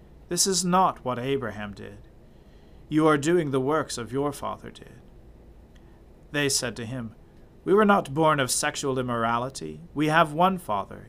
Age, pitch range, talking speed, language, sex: 40-59, 115-155 Hz, 160 wpm, English, male